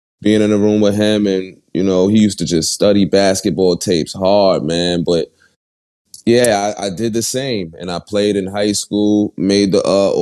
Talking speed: 200 wpm